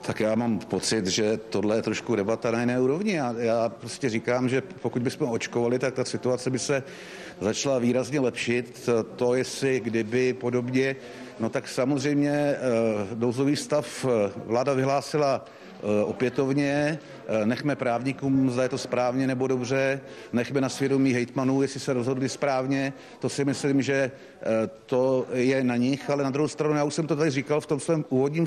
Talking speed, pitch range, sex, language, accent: 165 wpm, 125-150 Hz, male, Czech, native